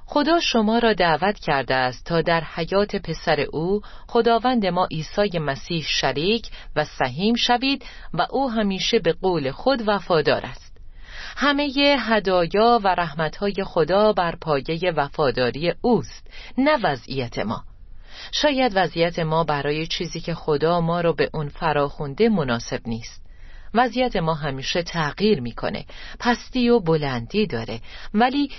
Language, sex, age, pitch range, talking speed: Persian, female, 40-59, 150-230 Hz, 130 wpm